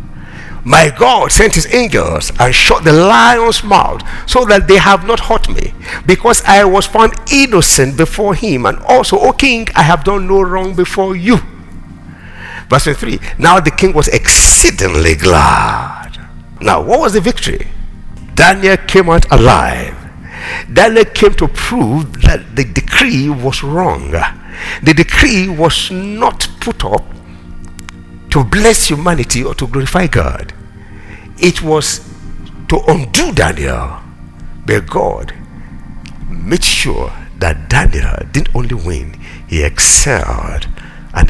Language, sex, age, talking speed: English, male, 60-79, 130 wpm